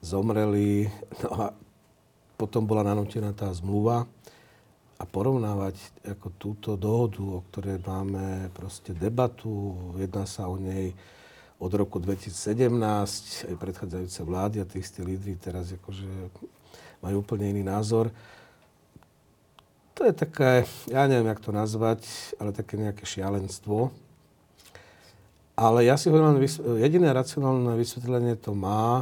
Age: 50-69